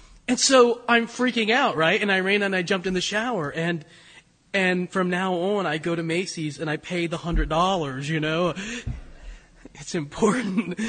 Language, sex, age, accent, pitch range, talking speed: English, male, 30-49, American, 170-240 Hz, 180 wpm